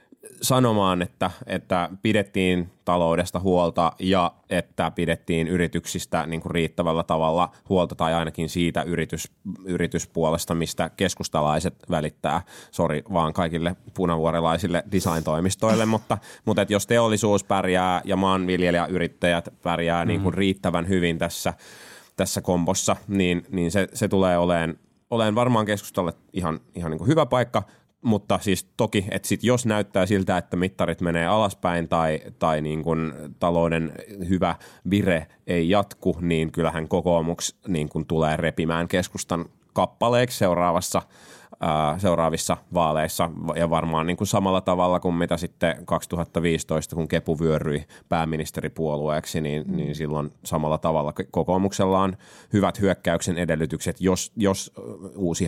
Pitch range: 80-95 Hz